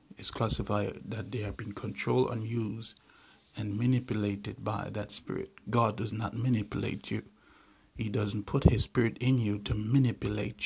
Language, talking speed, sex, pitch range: English, 160 wpm, male, 100-120 Hz